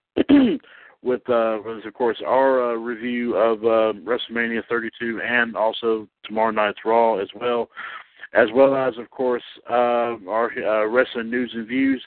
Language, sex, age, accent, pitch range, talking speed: English, male, 60-79, American, 110-130 Hz, 155 wpm